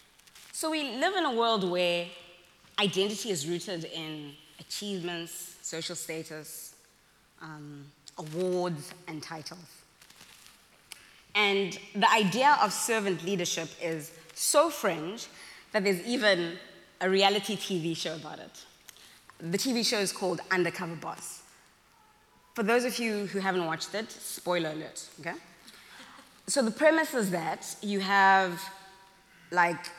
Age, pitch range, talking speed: 20-39, 170-225 Hz, 125 wpm